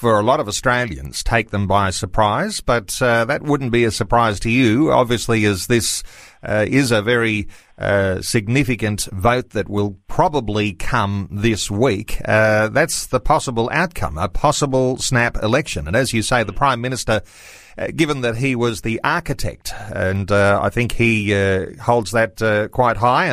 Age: 40-59